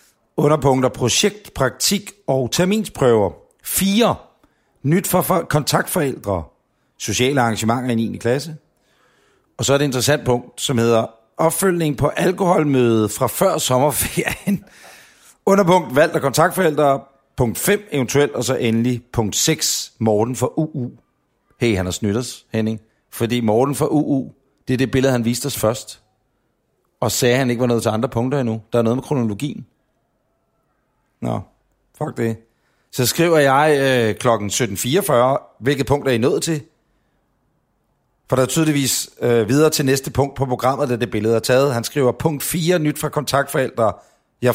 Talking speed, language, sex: 155 wpm, Danish, male